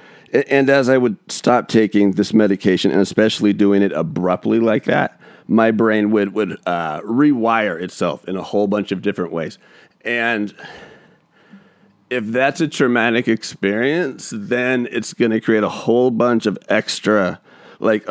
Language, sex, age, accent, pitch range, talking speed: English, male, 40-59, American, 105-135 Hz, 150 wpm